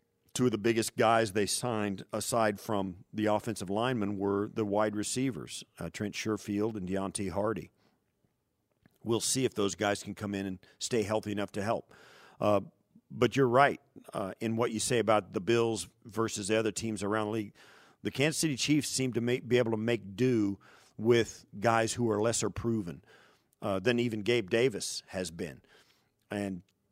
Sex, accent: male, American